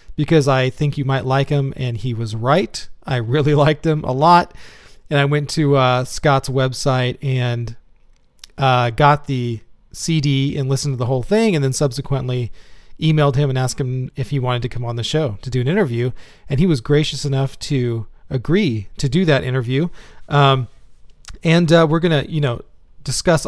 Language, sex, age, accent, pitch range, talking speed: English, male, 40-59, American, 125-150 Hz, 190 wpm